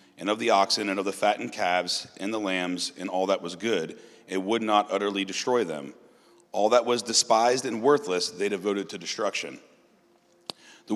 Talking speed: 185 wpm